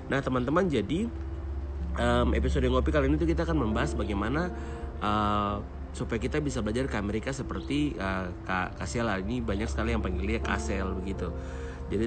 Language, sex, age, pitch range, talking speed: Indonesian, male, 30-49, 90-115 Hz, 150 wpm